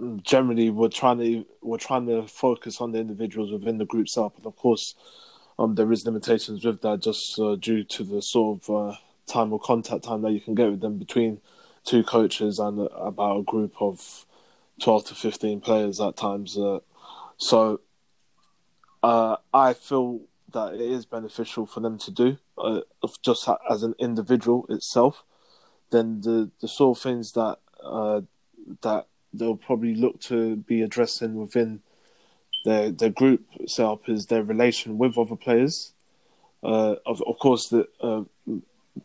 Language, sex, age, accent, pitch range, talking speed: English, male, 20-39, British, 105-120 Hz, 165 wpm